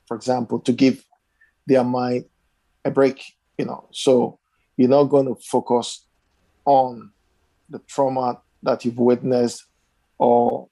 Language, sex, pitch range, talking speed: English, male, 115-130 Hz, 130 wpm